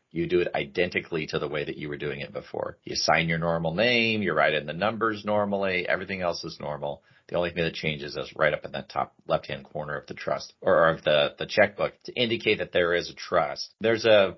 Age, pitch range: 40-59, 80-100 Hz